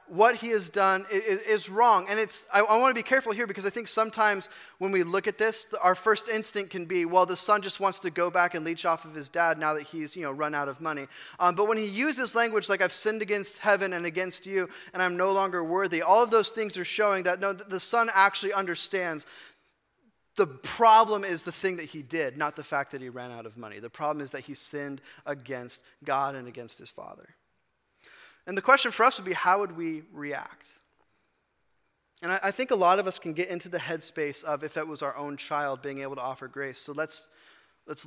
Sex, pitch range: male, 145-195 Hz